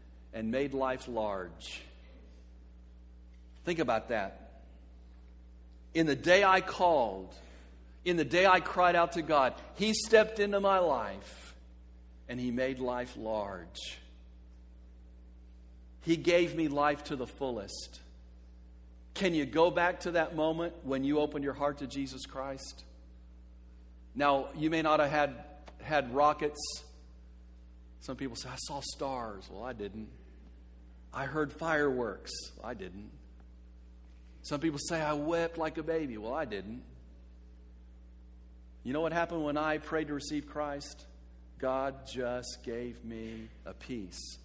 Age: 60-79